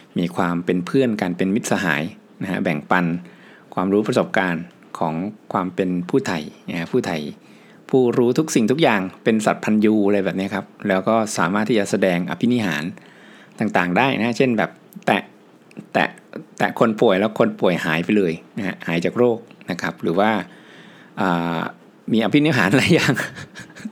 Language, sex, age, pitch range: Thai, male, 60-79, 90-120 Hz